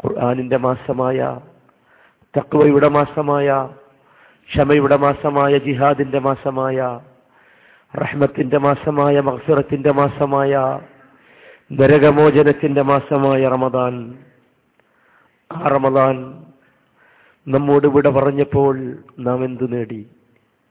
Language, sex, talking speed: Malayalam, male, 65 wpm